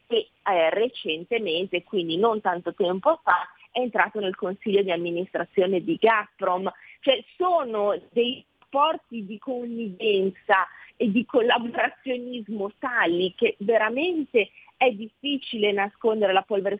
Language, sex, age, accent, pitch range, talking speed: Italian, female, 30-49, native, 200-300 Hz, 120 wpm